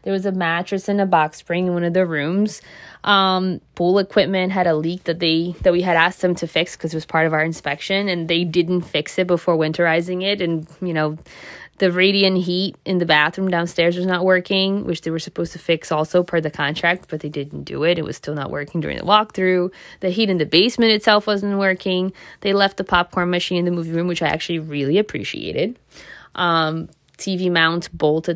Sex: female